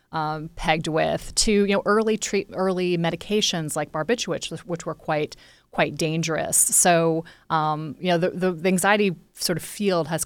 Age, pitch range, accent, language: 30-49, 160-185 Hz, American, English